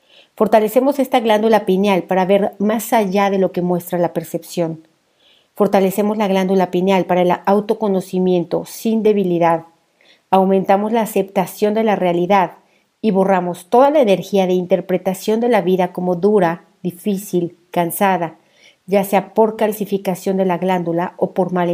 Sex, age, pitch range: female, 50-69, 180-210 Hz